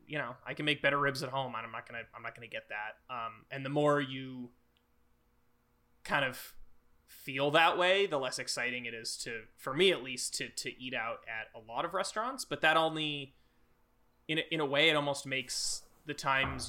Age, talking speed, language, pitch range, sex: 20-39, 210 wpm, English, 120-140 Hz, male